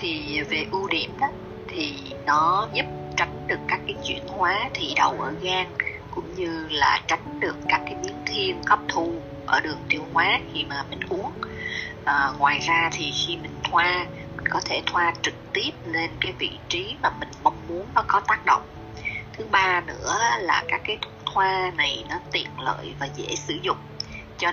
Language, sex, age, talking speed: Vietnamese, female, 20-39, 190 wpm